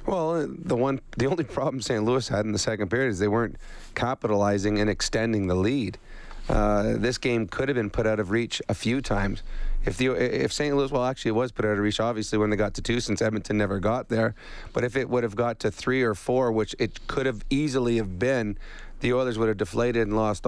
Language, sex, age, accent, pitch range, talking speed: English, male, 30-49, American, 105-130 Hz, 240 wpm